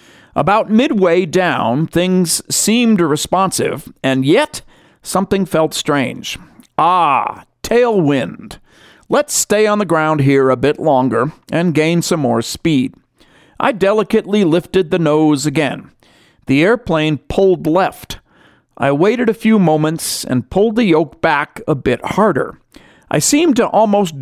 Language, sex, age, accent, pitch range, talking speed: English, male, 50-69, American, 145-210 Hz, 135 wpm